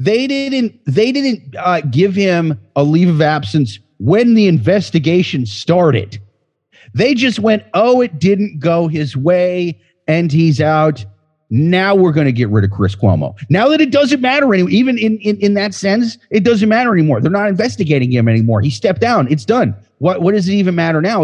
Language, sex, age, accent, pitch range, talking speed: English, male, 30-49, American, 130-185 Hz, 195 wpm